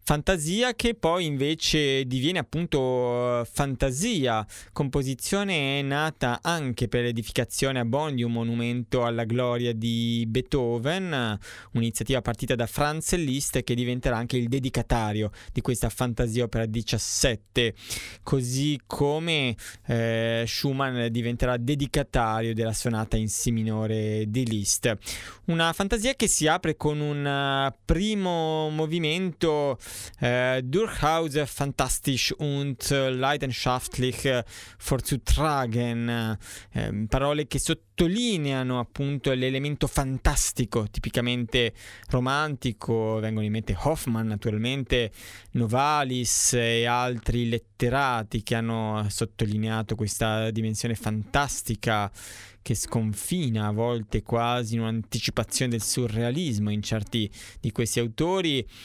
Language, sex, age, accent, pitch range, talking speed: Italian, male, 20-39, native, 115-145 Hz, 110 wpm